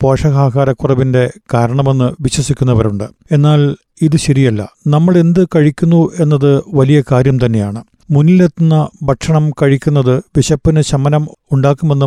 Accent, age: native, 50-69